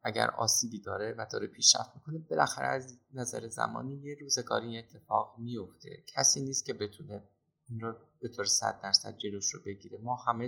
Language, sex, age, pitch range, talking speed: Persian, male, 30-49, 105-130 Hz, 185 wpm